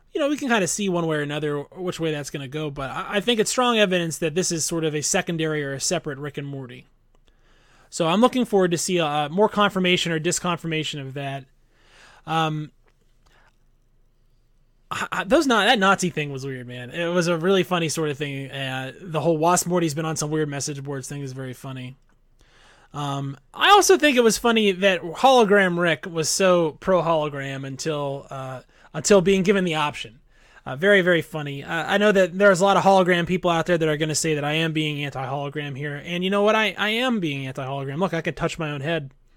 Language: English